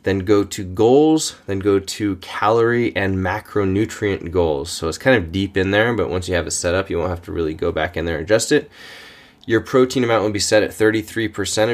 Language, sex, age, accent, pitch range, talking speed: English, male, 20-39, American, 90-110 Hz, 230 wpm